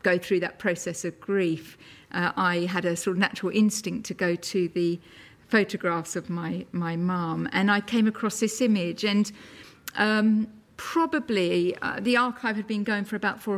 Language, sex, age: English, female, 50-69